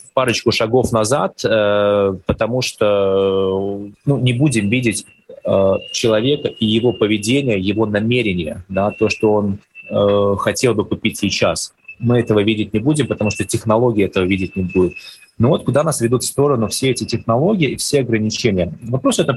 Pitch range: 105-125 Hz